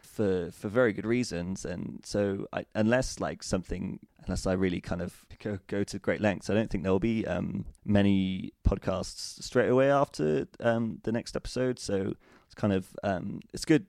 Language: English